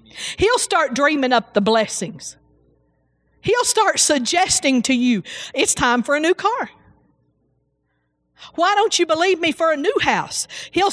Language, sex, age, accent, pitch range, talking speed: English, female, 40-59, American, 185-260 Hz, 150 wpm